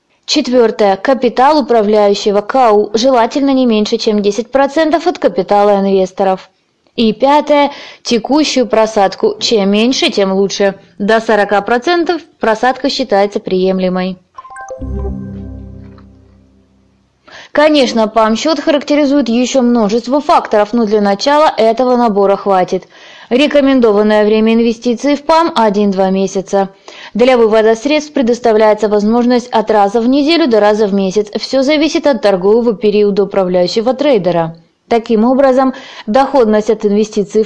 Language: Russian